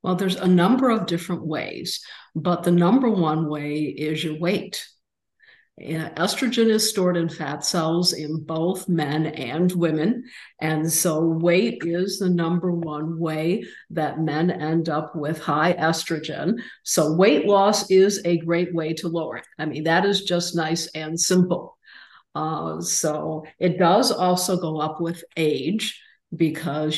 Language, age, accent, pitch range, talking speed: English, 50-69, American, 160-185 Hz, 155 wpm